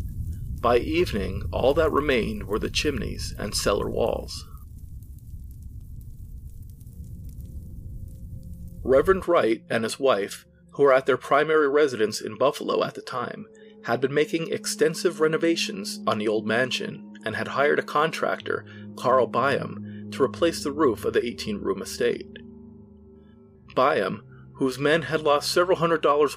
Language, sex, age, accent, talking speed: English, male, 40-59, American, 135 wpm